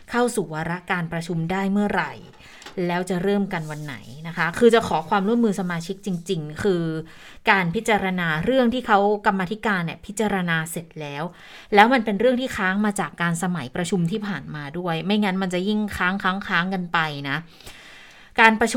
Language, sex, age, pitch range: Thai, female, 20-39, 170-210 Hz